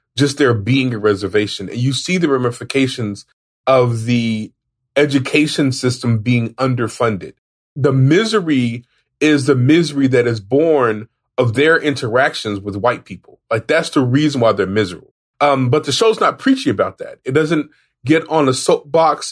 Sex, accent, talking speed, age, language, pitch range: male, American, 160 wpm, 30-49, English, 125-160 Hz